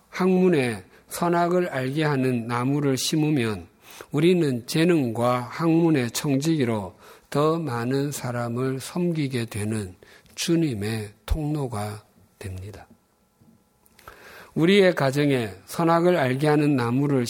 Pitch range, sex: 115-160 Hz, male